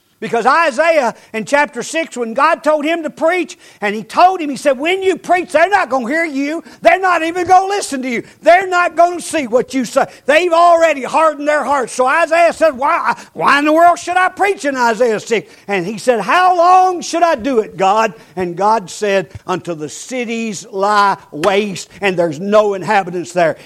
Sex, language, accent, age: male, English, American, 60-79